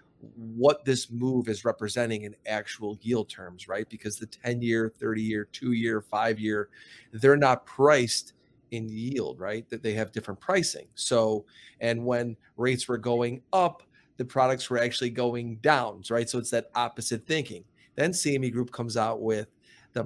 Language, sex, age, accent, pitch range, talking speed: English, male, 30-49, American, 115-135 Hz, 170 wpm